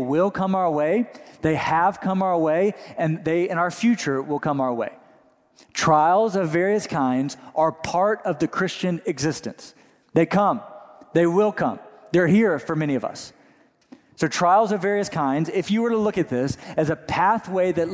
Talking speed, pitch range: 185 wpm, 160-200 Hz